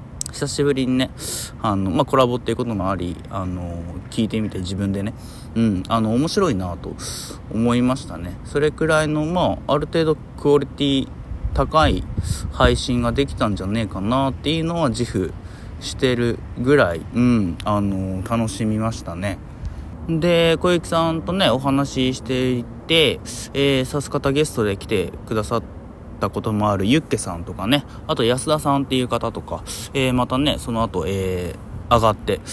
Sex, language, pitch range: male, Japanese, 95-140 Hz